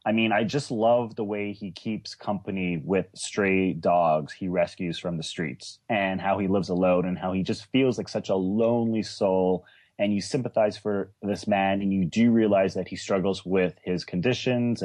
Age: 30-49